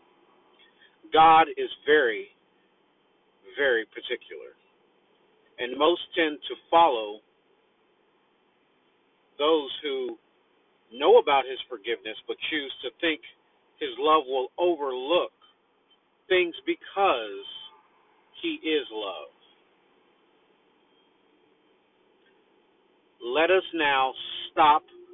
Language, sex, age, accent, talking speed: English, male, 50-69, American, 80 wpm